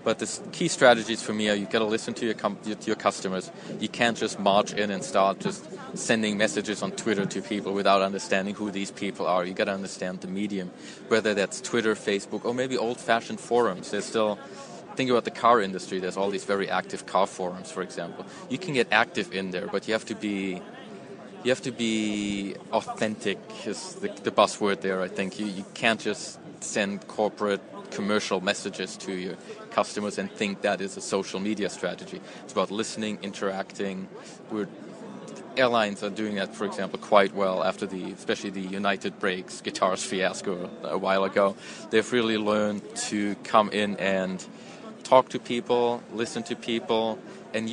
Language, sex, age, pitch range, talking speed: English, male, 20-39, 95-110 Hz, 185 wpm